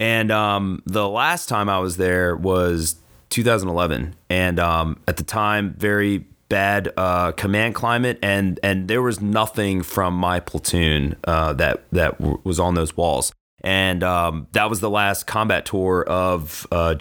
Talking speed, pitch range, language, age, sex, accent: 160 wpm, 85-110 Hz, English, 30-49, male, American